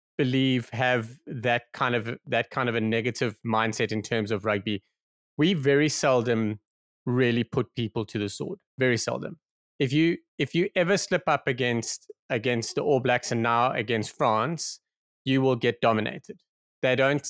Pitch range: 120-155 Hz